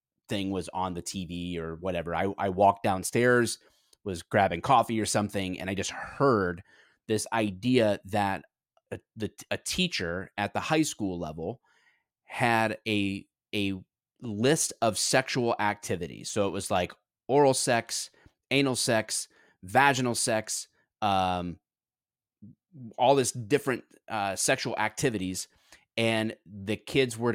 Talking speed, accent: 130 wpm, American